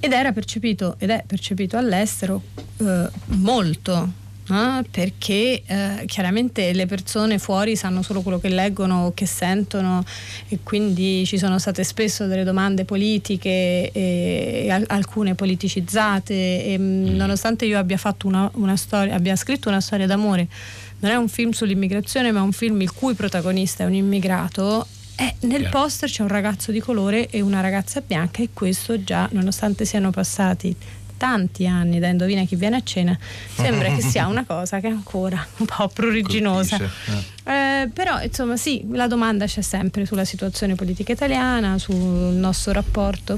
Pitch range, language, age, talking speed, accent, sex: 180-210 Hz, Italian, 30-49, 160 wpm, native, female